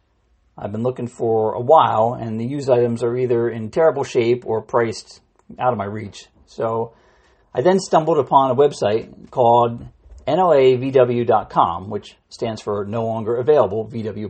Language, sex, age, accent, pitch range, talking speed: English, male, 50-69, American, 115-135 Hz, 155 wpm